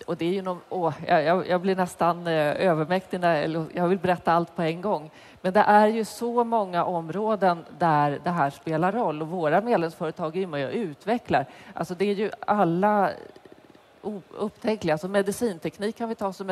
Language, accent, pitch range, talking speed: Swedish, native, 160-200 Hz, 180 wpm